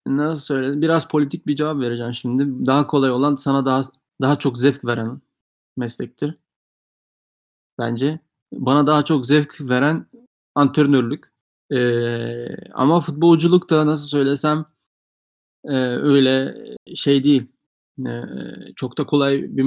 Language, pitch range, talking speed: Turkish, 130-155 Hz, 120 wpm